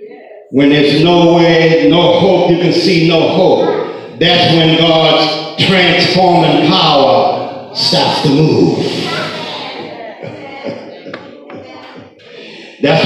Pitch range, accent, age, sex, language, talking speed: 140-195 Hz, American, 60-79, male, English, 90 wpm